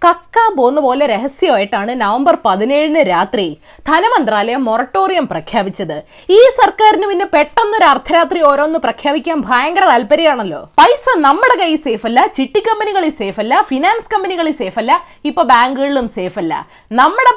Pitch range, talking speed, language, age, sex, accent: 245-370 Hz, 115 wpm, Malayalam, 20-39, female, native